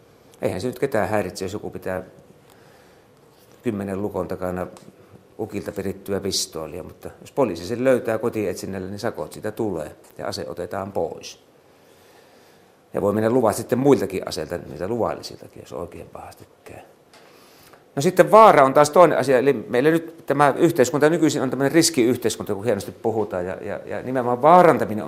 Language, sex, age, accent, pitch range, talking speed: Finnish, male, 50-69, native, 95-130 Hz, 155 wpm